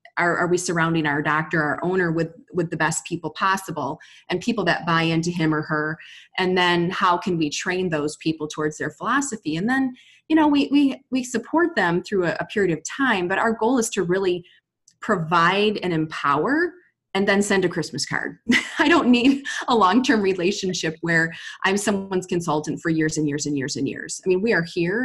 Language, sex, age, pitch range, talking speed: English, female, 20-39, 160-225 Hz, 205 wpm